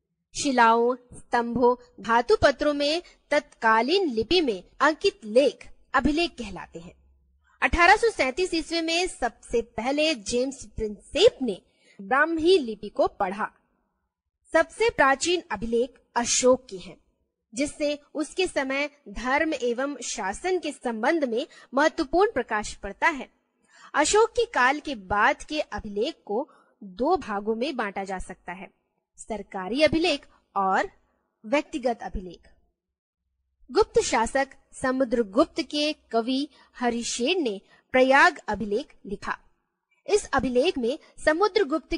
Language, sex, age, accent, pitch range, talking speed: Hindi, female, 20-39, native, 230-310 Hz, 115 wpm